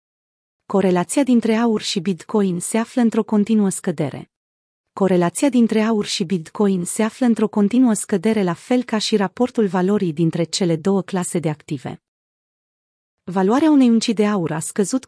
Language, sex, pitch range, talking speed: Romanian, female, 175-225 Hz, 155 wpm